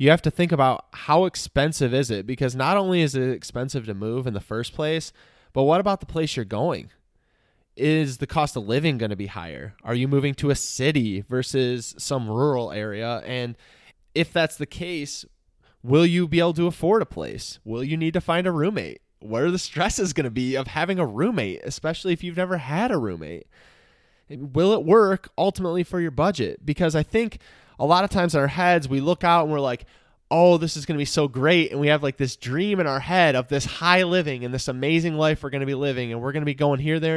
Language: English